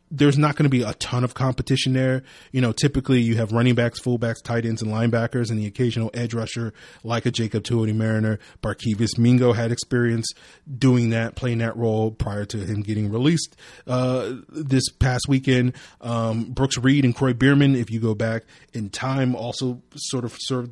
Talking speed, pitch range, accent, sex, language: 190 wpm, 115-130 Hz, American, male, English